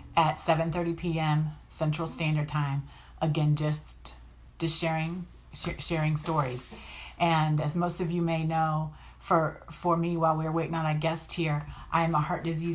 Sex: female